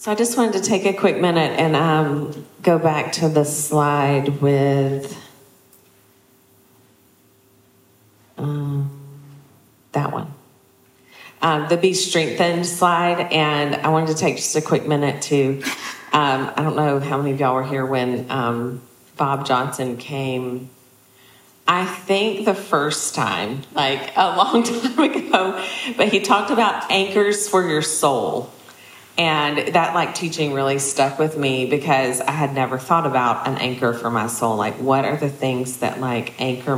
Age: 40-59